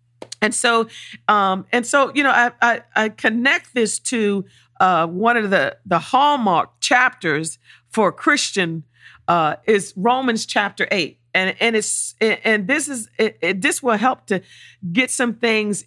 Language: English